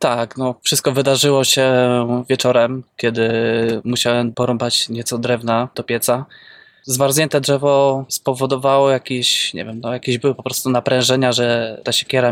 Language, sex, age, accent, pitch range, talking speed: Polish, male, 20-39, native, 120-135 Hz, 135 wpm